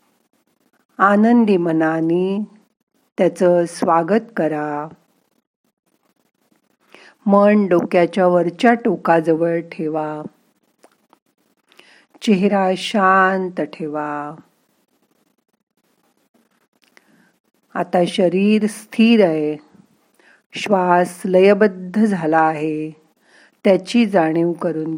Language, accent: Marathi, native